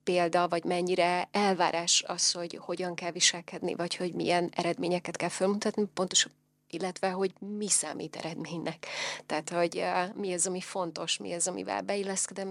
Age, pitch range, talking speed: 30-49, 175-195 Hz, 145 wpm